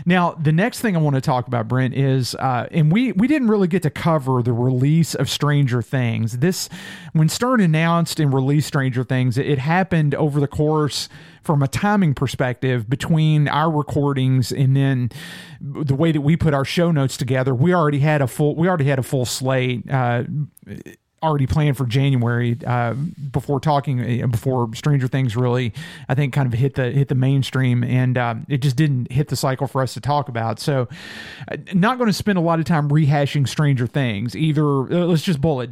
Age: 40-59